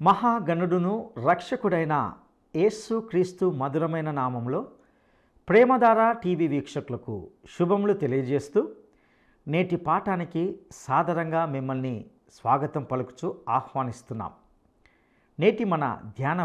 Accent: Indian